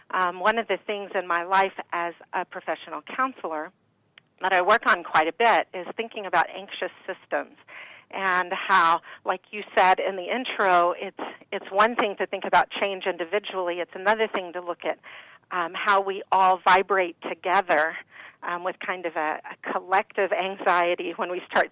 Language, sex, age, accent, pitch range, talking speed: English, female, 40-59, American, 170-195 Hz, 175 wpm